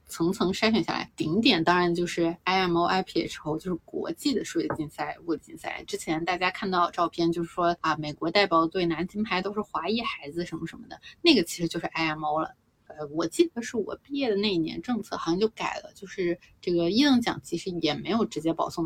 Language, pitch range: Chinese, 170-230 Hz